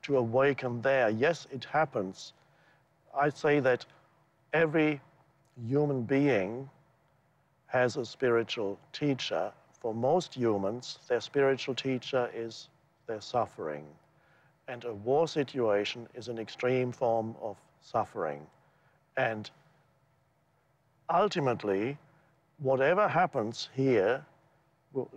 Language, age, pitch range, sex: English, 60-79, 120-145 Hz, male